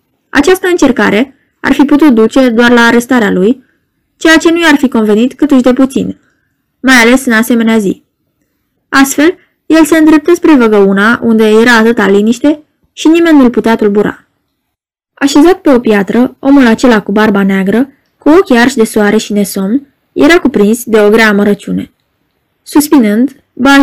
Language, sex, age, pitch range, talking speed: Romanian, female, 20-39, 210-275 Hz, 160 wpm